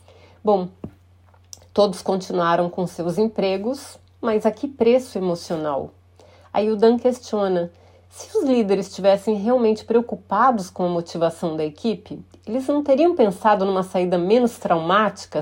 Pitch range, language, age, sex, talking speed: 180-235 Hz, Portuguese, 30-49, female, 130 wpm